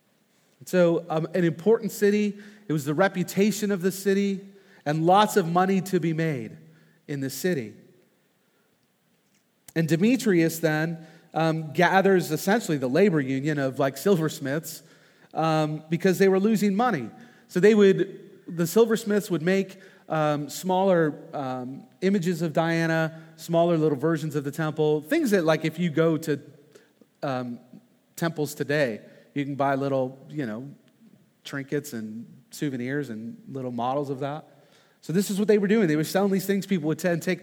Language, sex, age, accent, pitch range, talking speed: English, male, 40-59, American, 150-195 Hz, 160 wpm